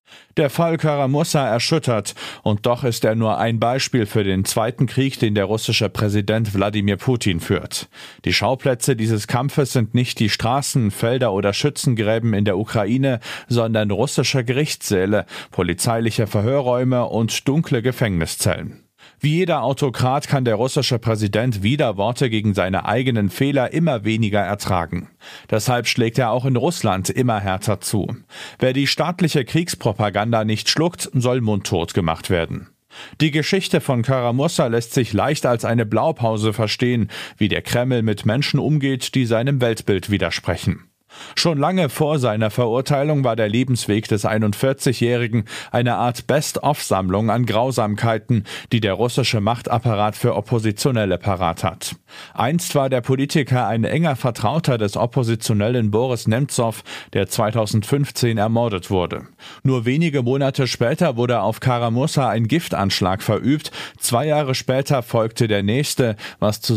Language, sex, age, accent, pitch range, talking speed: German, male, 40-59, German, 105-135 Hz, 140 wpm